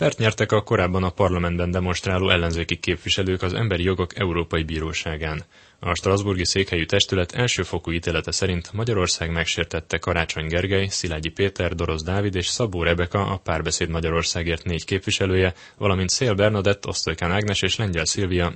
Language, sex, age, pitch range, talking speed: Hungarian, male, 10-29, 85-100 Hz, 140 wpm